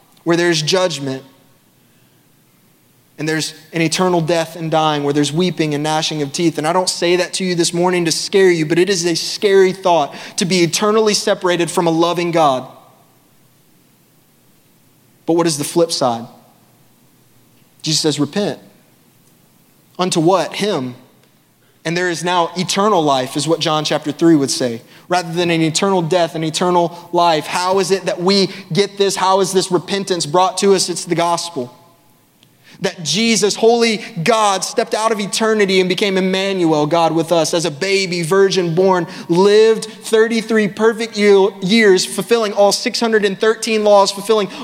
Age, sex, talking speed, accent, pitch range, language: 20-39, male, 165 wpm, American, 165-205 Hz, English